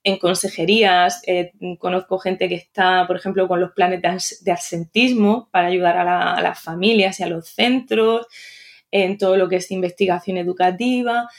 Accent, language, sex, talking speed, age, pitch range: Spanish, Spanish, female, 170 wpm, 20-39, 190-250 Hz